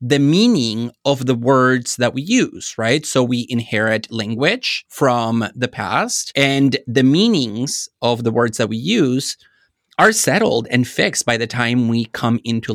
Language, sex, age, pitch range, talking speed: English, male, 30-49, 115-150 Hz, 165 wpm